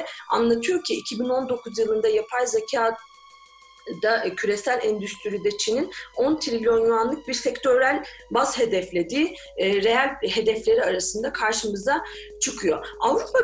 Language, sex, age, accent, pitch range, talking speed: Turkish, female, 40-59, native, 215-330 Hz, 105 wpm